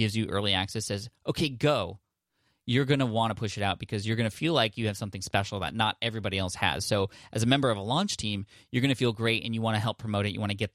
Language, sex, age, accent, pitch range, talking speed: English, male, 20-39, American, 105-125 Hz, 300 wpm